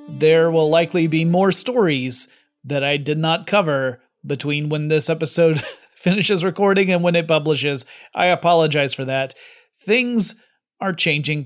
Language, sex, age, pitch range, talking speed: English, male, 30-49, 140-175 Hz, 145 wpm